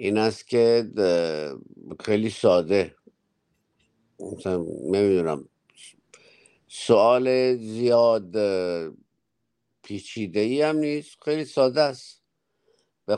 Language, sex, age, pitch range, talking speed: Persian, male, 50-69, 100-125 Hz, 75 wpm